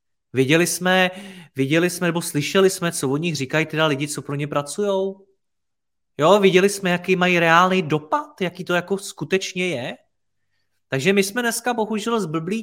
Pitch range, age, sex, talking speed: 135-180 Hz, 30-49, male, 165 wpm